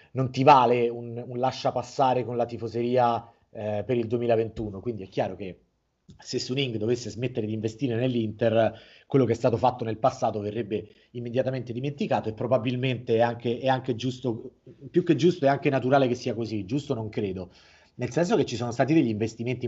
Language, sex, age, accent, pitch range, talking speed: Italian, male, 30-49, native, 115-140 Hz, 185 wpm